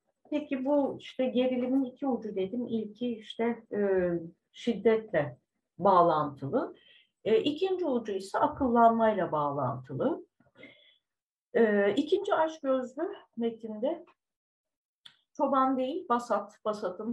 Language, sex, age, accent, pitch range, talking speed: Turkish, female, 60-79, native, 170-265 Hz, 90 wpm